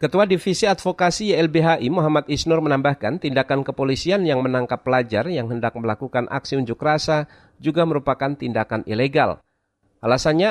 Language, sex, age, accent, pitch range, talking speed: Indonesian, male, 50-69, native, 120-155 Hz, 130 wpm